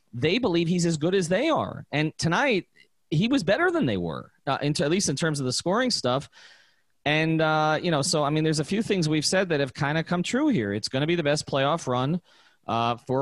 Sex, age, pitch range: male, 30-49, 125-170 Hz